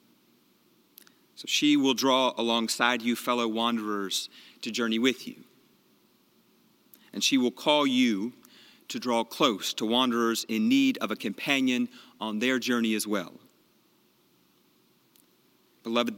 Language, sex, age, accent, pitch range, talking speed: English, male, 40-59, American, 115-130 Hz, 120 wpm